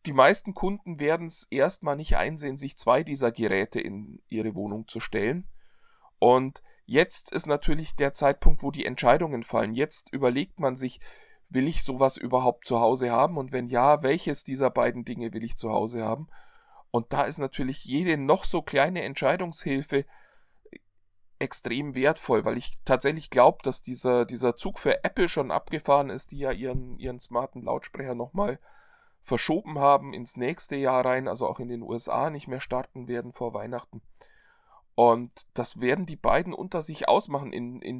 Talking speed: 170 wpm